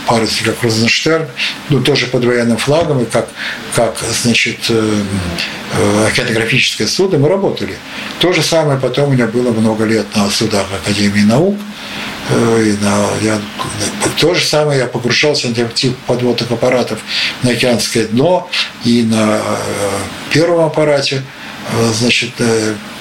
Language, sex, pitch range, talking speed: Russian, male, 110-130 Hz, 130 wpm